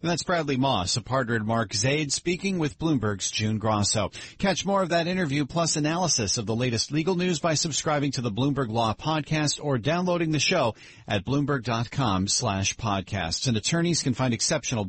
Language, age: English, 50-69